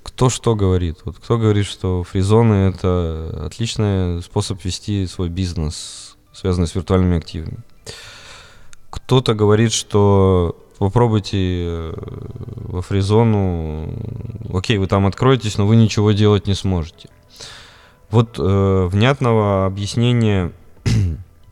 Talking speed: 105 wpm